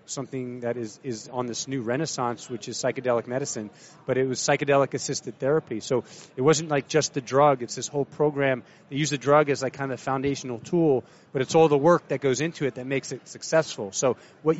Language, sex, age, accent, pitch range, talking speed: English, male, 30-49, American, 130-160 Hz, 220 wpm